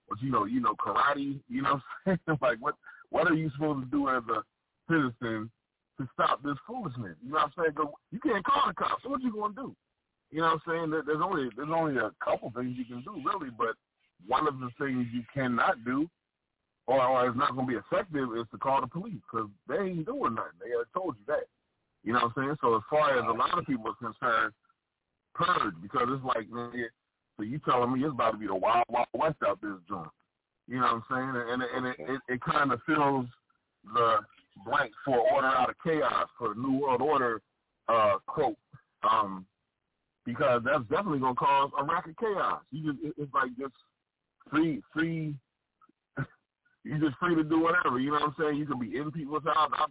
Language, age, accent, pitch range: English, 30-49, American, 125-155 Hz